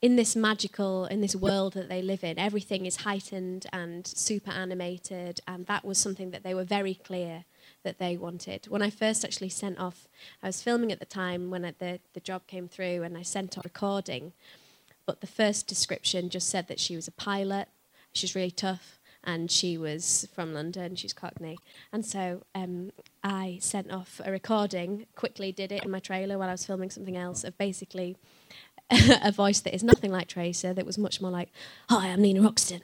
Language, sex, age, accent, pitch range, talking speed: English, female, 20-39, British, 180-205 Hz, 205 wpm